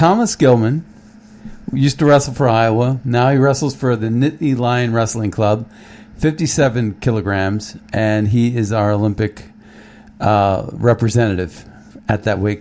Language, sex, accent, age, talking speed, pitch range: English, male, American, 50-69, 135 wpm, 105-135 Hz